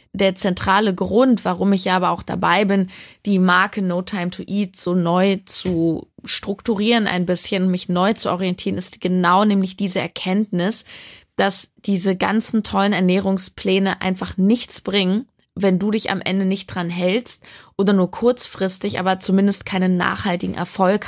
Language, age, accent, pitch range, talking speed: German, 20-39, German, 180-210 Hz, 155 wpm